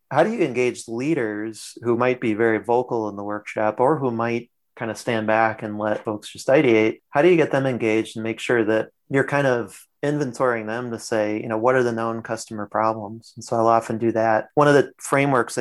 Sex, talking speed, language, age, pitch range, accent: male, 230 wpm, English, 30-49, 110-125 Hz, American